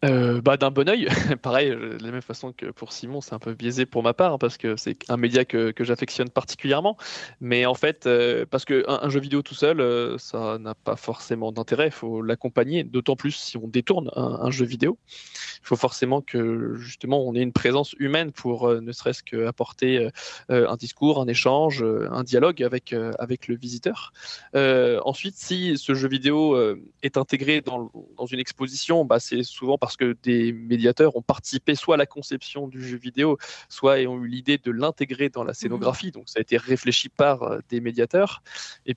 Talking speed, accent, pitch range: 205 wpm, French, 120-140 Hz